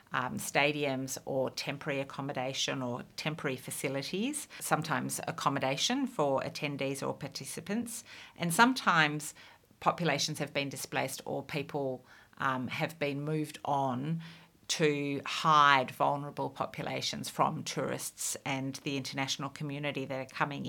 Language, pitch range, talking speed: English, 140-165 Hz, 115 wpm